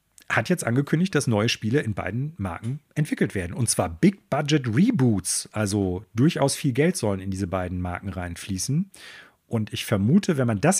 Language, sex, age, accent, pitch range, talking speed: German, male, 40-59, German, 100-140 Hz, 180 wpm